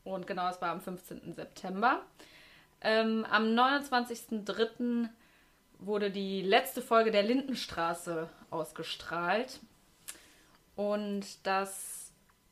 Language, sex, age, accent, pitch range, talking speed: German, female, 20-39, German, 185-230 Hz, 90 wpm